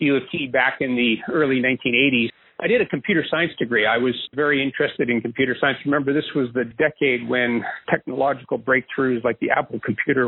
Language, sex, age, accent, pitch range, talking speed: English, male, 40-59, American, 120-145 Hz, 195 wpm